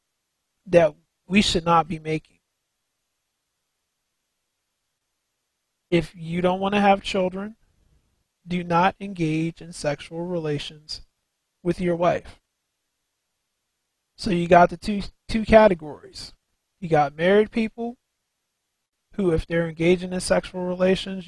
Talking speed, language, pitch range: 115 wpm, English, 160-190 Hz